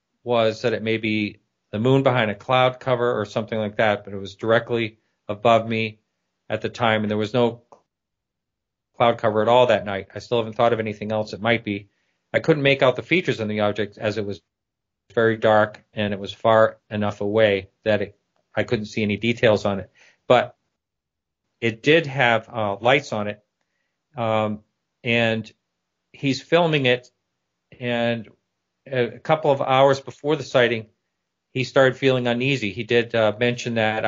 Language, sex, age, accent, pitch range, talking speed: English, male, 40-59, American, 105-125 Hz, 180 wpm